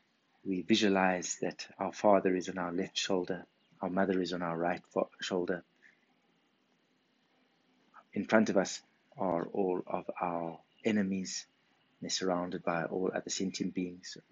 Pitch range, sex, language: 90-95 Hz, male, English